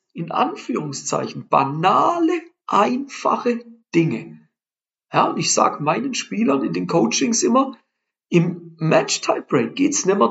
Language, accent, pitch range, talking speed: German, German, 145-200 Hz, 130 wpm